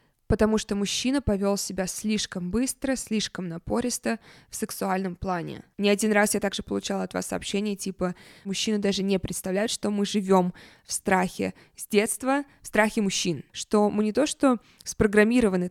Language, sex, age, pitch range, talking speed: Russian, female, 20-39, 185-230 Hz, 160 wpm